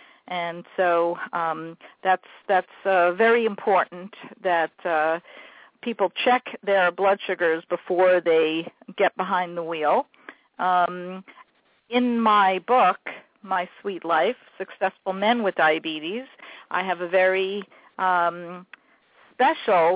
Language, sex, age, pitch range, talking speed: English, female, 50-69, 180-230 Hz, 115 wpm